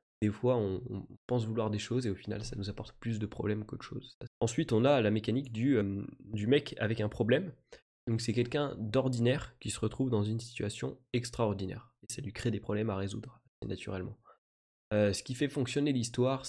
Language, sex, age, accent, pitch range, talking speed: French, male, 20-39, French, 105-125 Hz, 205 wpm